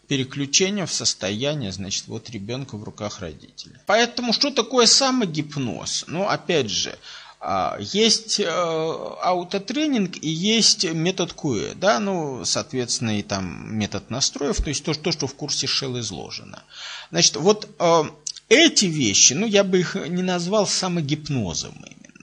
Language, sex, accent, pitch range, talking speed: Russian, male, native, 125-190 Hz, 130 wpm